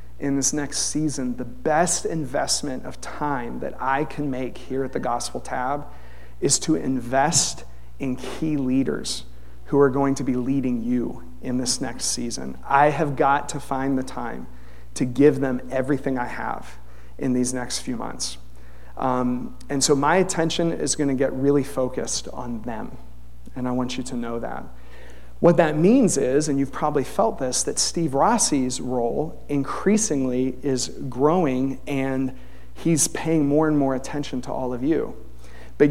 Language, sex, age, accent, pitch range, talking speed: English, male, 40-59, American, 120-150 Hz, 170 wpm